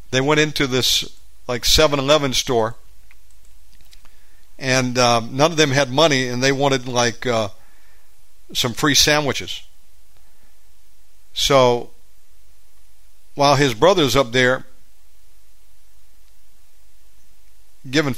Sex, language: male, English